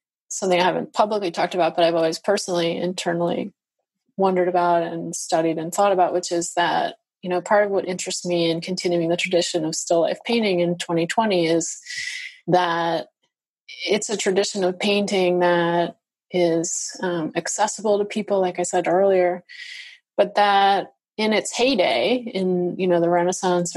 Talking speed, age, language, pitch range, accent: 165 wpm, 30-49, English, 170-205 Hz, American